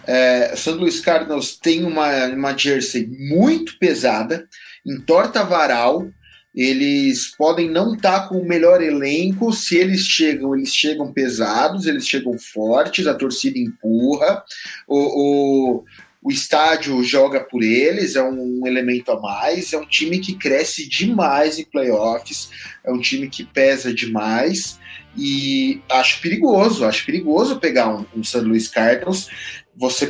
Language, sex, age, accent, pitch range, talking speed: English, male, 30-49, Brazilian, 130-175 Hz, 140 wpm